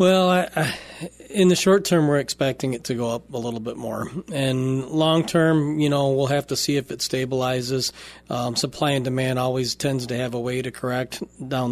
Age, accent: 40-59, American